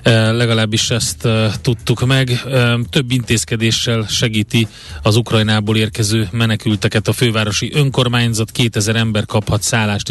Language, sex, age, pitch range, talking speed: Hungarian, male, 30-49, 105-120 Hz, 105 wpm